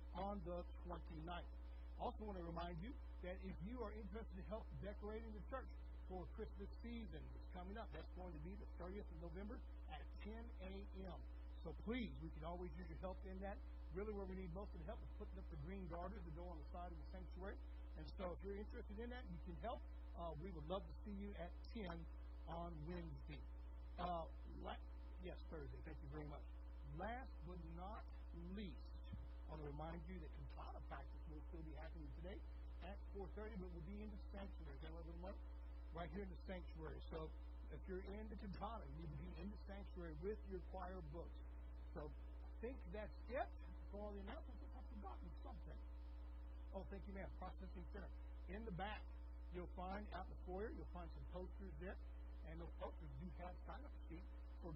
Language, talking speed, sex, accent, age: English, 195 wpm, male, American, 60-79